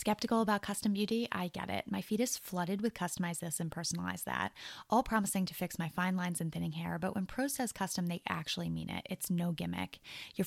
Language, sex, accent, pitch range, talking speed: English, female, American, 170-215 Hz, 230 wpm